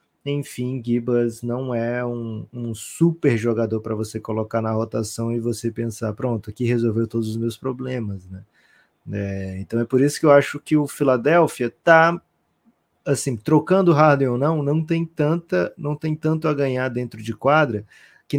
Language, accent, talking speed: Portuguese, Brazilian, 175 wpm